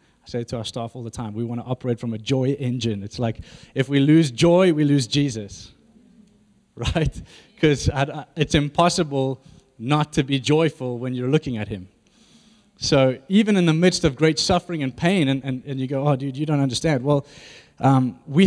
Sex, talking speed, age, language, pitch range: male, 200 wpm, 20-39, English, 130-190 Hz